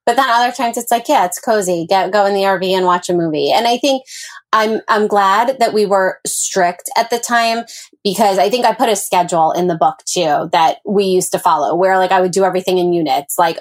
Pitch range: 180-230 Hz